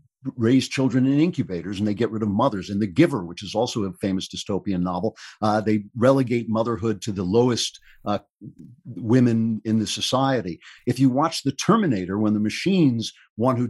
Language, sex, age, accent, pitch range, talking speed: English, male, 50-69, American, 100-135 Hz, 185 wpm